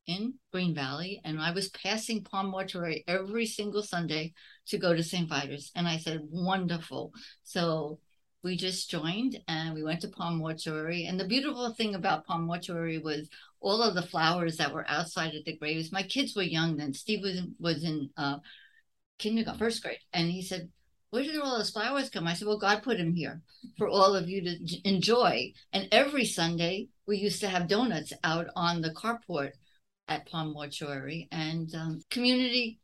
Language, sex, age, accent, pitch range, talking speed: English, female, 60-79, American, 160-205 Hz, 190 wpm